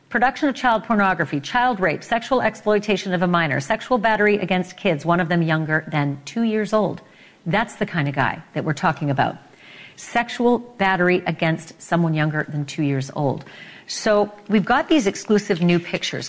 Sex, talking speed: female, 175 wpm